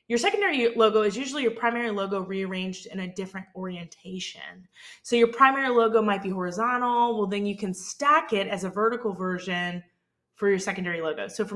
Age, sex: 20-39, female